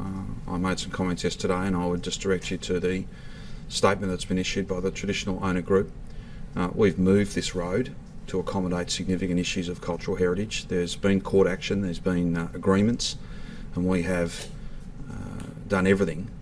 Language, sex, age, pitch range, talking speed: English, male, 30-49, 85-95 Hz, 180 wpm